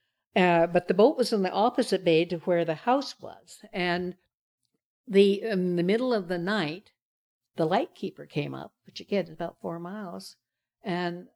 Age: 60-79